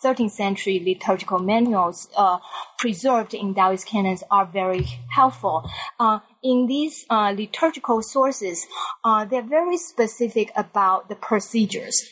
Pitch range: 195-230 Hz